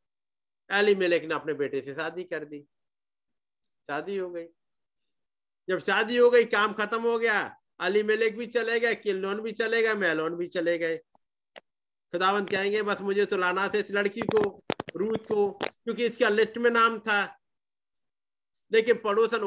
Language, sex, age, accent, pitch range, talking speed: Hindi, male, 50-69, native, 180-230 Hz, 165 wpm